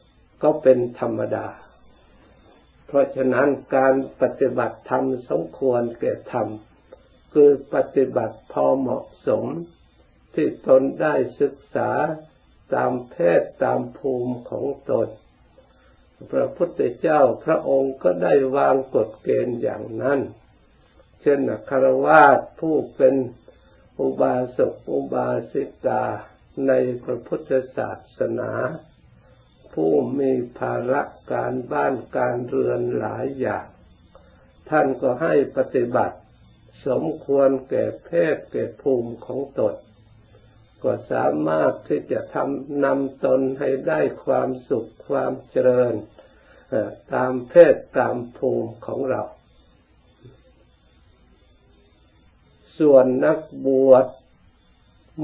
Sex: male